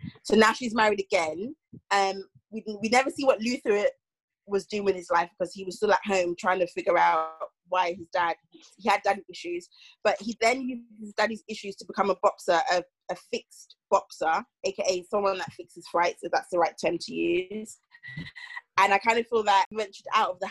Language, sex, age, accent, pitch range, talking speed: English, female, 20-39, British, 180-220 Hz, 210 wpm